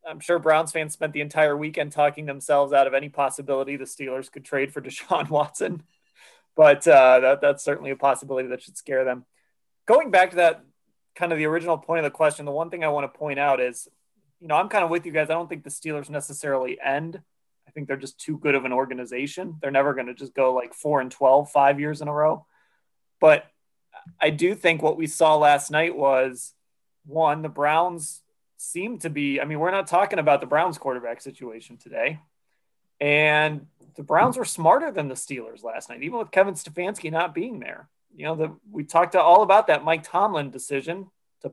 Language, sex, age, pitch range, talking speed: English, male, 30-49, 140-165 Hz, 215 wpm